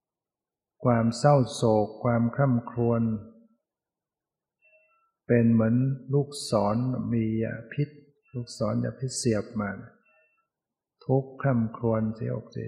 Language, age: Thai, 60-79